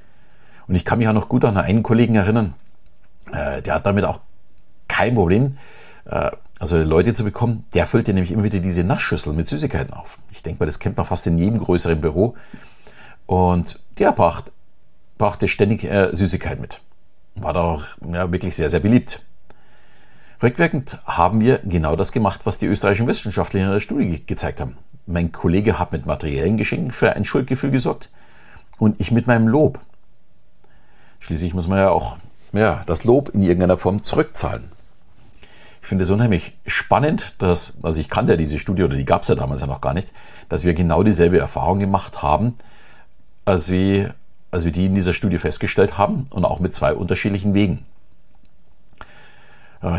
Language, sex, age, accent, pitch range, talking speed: German, male, 50-69, German, 85-105 Hz, 180 wpm